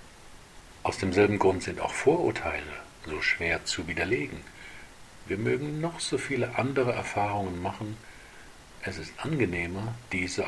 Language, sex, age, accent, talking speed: German, male, 50-69, German, 125 wpm